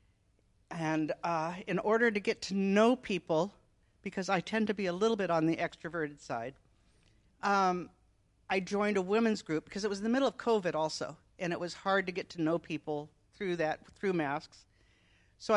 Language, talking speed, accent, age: English, 195 wpm, American, 50-69